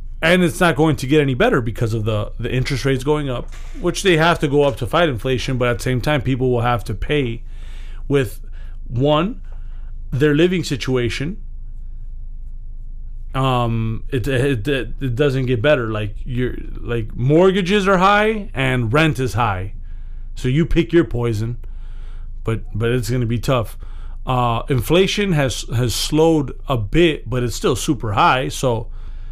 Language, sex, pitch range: English, male, 115-150 Hz